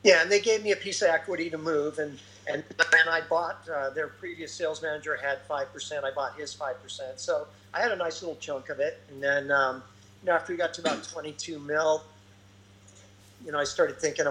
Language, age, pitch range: English, 50-69, 125-155 Hz